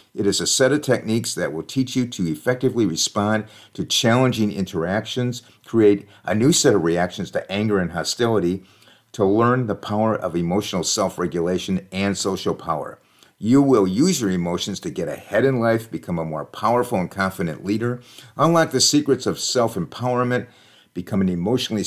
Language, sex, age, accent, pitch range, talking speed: English, male, 50-69, American, 95-125 Hz, 165 wpm